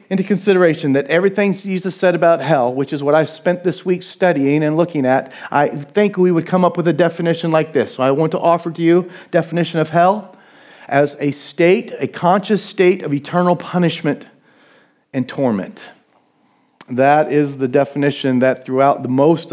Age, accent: 40-59, American